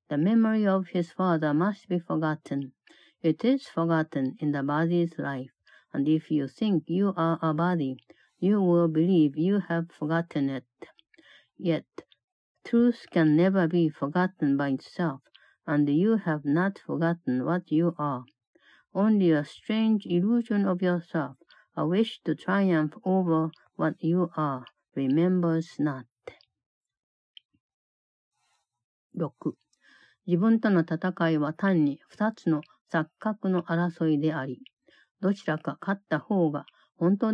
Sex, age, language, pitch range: female, 60-79, Japanese, 150-190 Hz